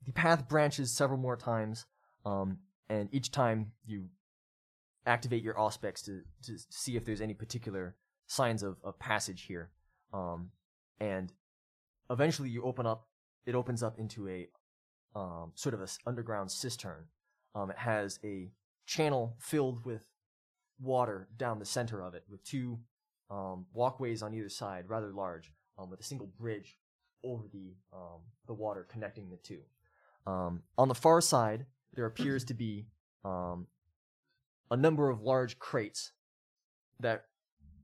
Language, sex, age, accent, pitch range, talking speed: English, male, 20-39, American, 95-125 Hz, 150 wpm